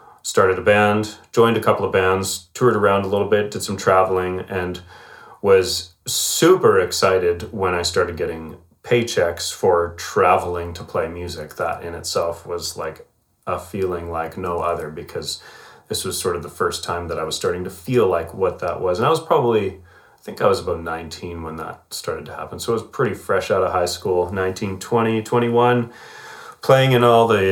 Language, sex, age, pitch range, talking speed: English, male, 30-49, 90-105 Hz, 195 wpm